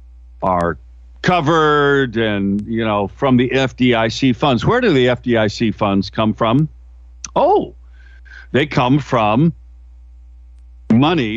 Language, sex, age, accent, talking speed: English, male, 60-79, American, 110 wpm